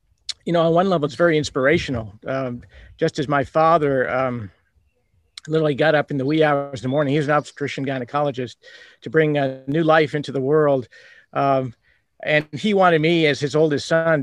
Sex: male